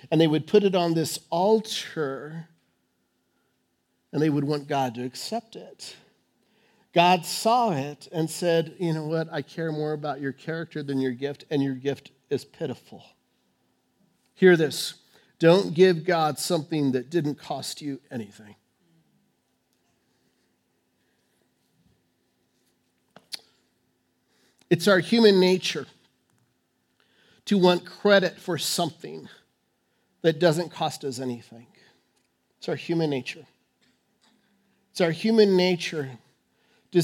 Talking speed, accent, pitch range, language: 115 wpm, American, 155-205 Hz, English